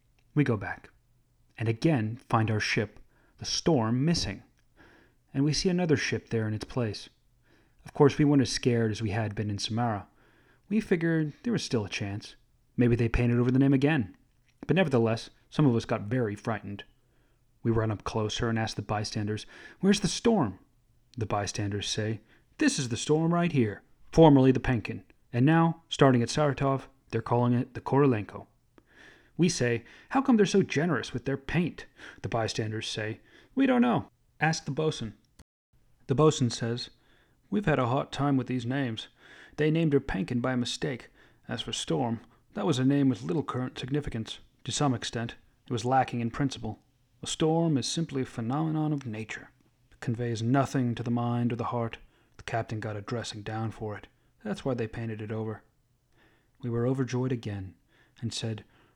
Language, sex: English, male